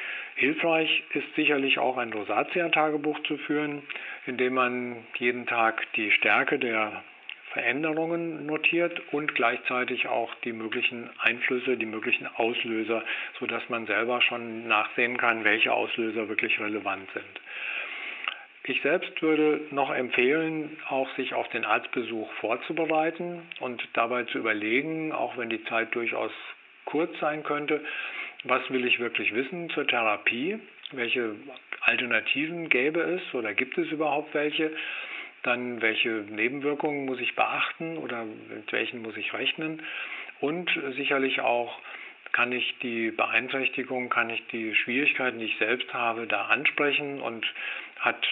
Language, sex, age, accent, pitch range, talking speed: German, male, 50-69, German, 115-150 Hz, 135 wpm